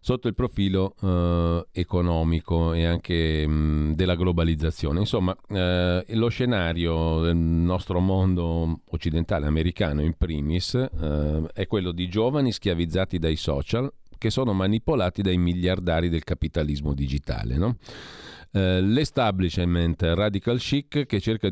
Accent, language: native, Italian